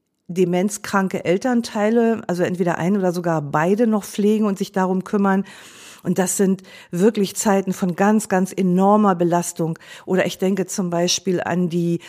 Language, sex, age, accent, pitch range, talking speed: German, female, 50-69, German, 175-215 Hz, 155 wpm